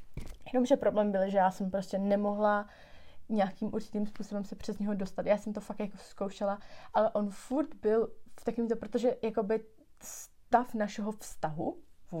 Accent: native